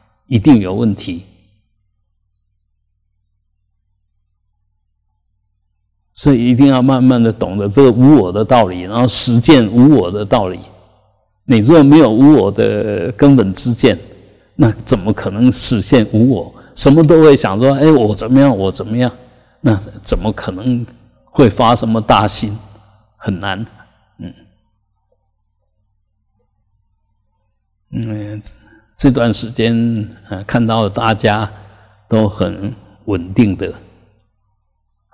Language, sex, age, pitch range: Chinese, male, 50-69, 100-115 Hz